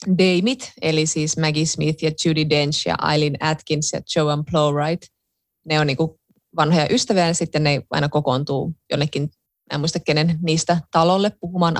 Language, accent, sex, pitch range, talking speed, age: Finnish, native, female, 155-215 Hz, 160 wpm, 20-39